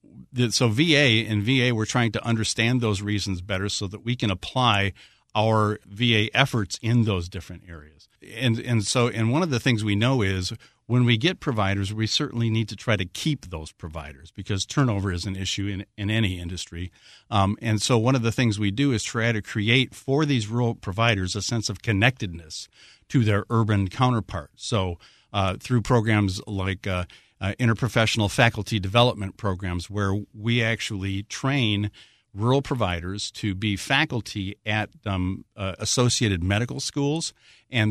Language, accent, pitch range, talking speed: English, American, 100-120 Hz, 170 wpm